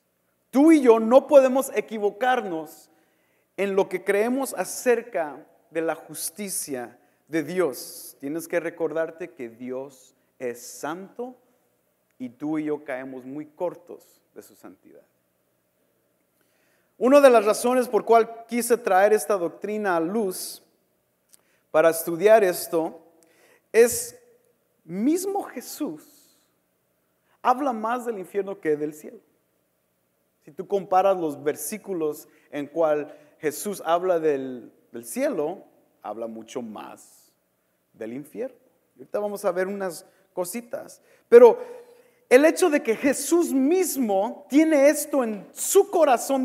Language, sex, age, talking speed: English, male, 40-59, 120 wpm